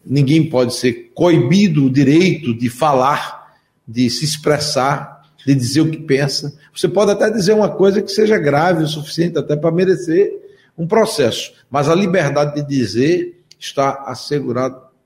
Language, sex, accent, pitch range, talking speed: Portuguese, male, Brazilian, 125-155 Hz, 155 wpm